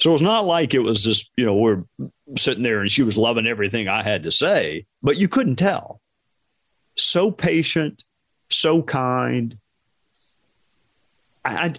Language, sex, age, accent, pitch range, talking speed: English, male, 50-69, American, 105-150 Hz, 160 wpm